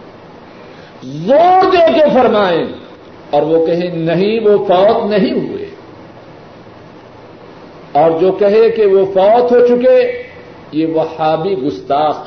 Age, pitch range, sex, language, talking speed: 50-69, 190-295 Hz, male, Urdu, 110 wpm